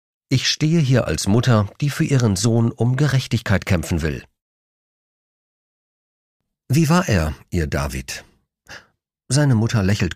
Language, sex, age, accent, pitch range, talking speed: German, male, 50-69, German, 95-125 Hz, 125 wpm